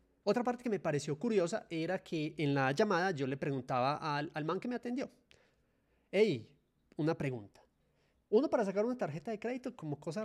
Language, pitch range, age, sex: Spanish, 145-205 Hz, 30-49, male